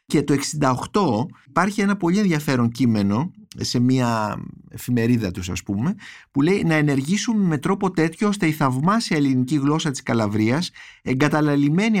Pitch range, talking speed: 120-170 Hz, 145 wpm